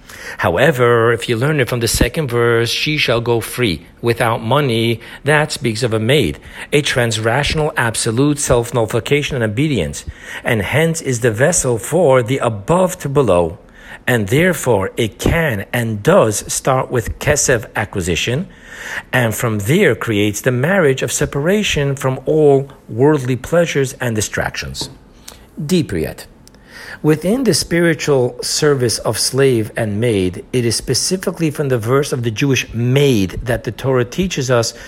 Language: English